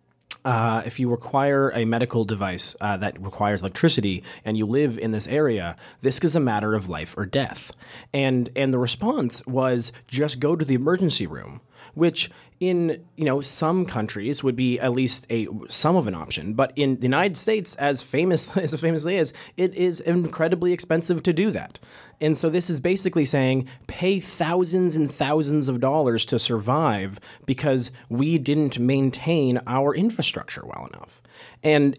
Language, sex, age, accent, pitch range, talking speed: English, male, 30-49, American, 120-155 Hz, 175 wpm